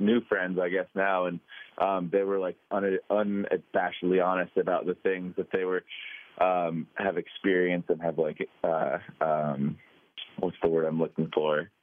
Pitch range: 85-100 Hz